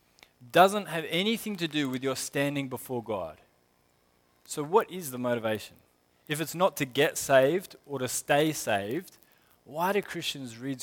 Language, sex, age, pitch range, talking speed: English, male, 20-39, 110-160 Hz, 160 wpm